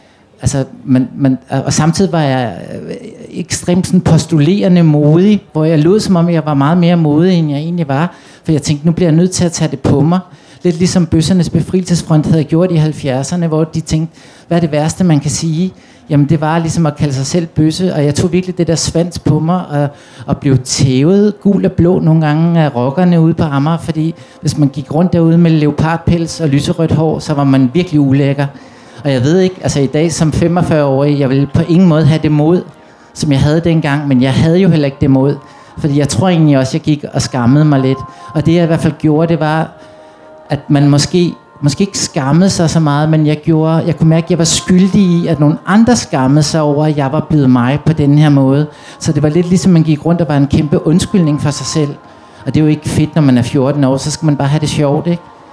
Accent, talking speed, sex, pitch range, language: native, 240 wpm, male, 145-170 Hz, Danish